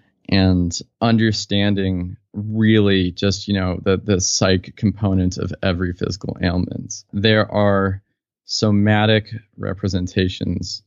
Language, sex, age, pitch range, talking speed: English, male, 20-39, 90-105 Hz, 100 wpm